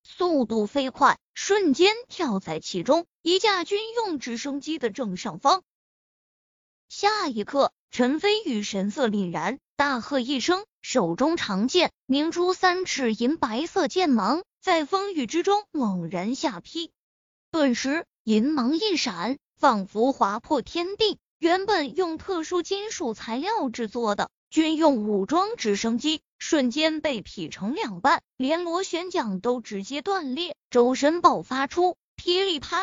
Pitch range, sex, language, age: 245-355 Hz, female, Chinese, 20-39